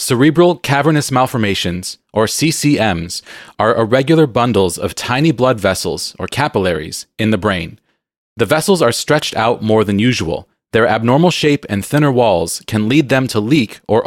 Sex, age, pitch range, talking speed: male, 30-49, 100-140 Hz, 160 wpm